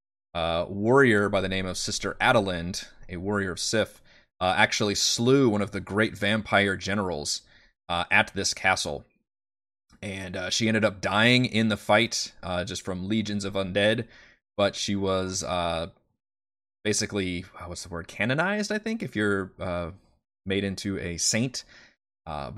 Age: 30-49